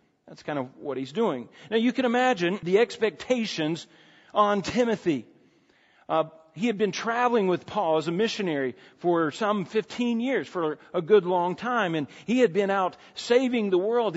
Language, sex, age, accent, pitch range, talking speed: English, male, 40-59, American, 160-225 Hz, 175 wpm